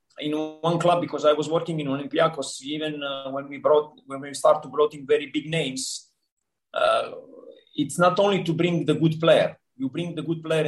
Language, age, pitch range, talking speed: English, 30-49, 140-170 Hz, 210 wpm